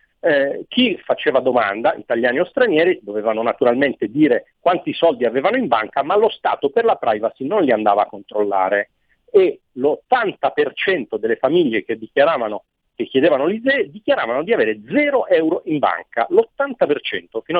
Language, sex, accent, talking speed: Italian, male, native, 150 wpm